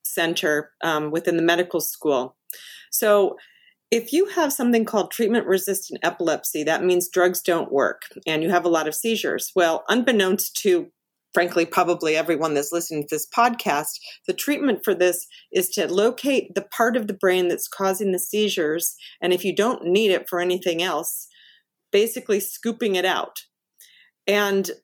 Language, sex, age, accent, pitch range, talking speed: English, female, 40-59, American, 175-230 Hz, 165 wpm